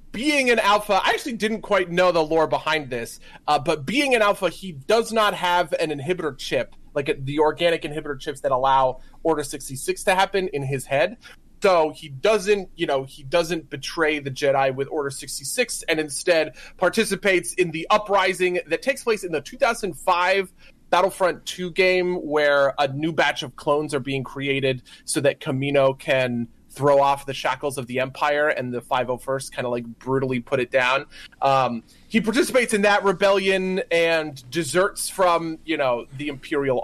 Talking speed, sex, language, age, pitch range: 180 wpm, male, English, 30-49, 135-185 Hz